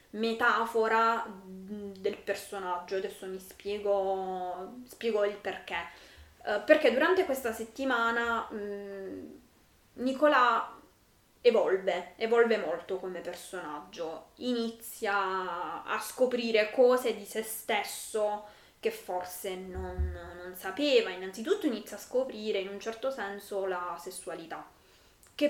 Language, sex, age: Italian, female, 20-39